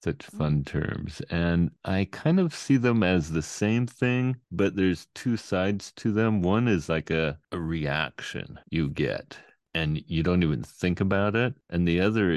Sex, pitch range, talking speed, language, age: male, 80-105 Hz, 180 wpm, English, 40-59